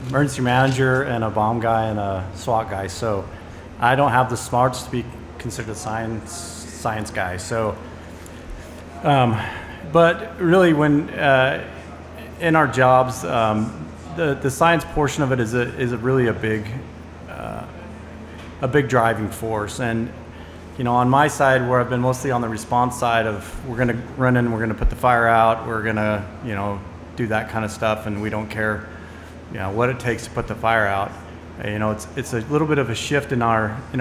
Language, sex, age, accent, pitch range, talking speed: English, male, 30-49, American, 105-125 Hz, 200 wpm